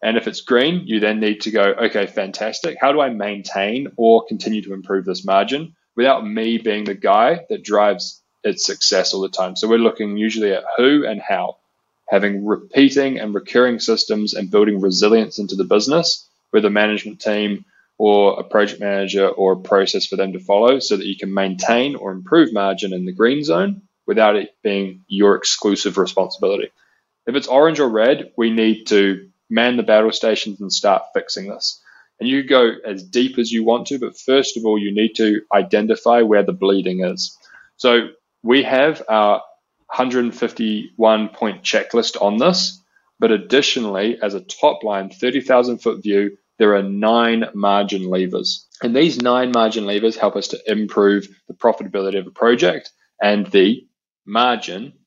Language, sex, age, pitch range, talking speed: English, male, 20-39, 100-120 Hz, 175 wpm